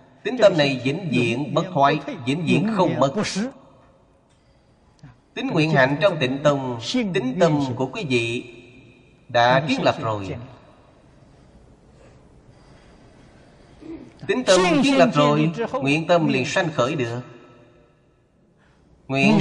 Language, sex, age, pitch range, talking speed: Vietnamese, male, 30-49, 130-170 Hz, 120 wpm